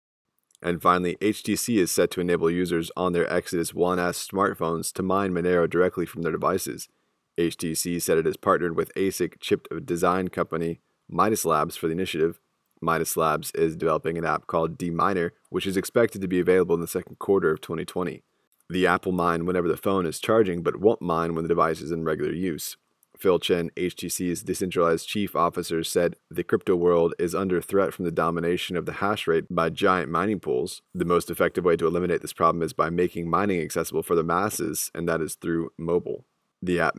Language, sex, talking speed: English, male, 195 wpm